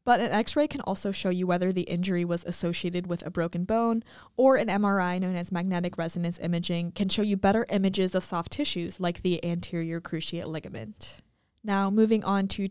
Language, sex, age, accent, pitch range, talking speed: English, female, 10-29, American, 175-215 Hz, 195 wpm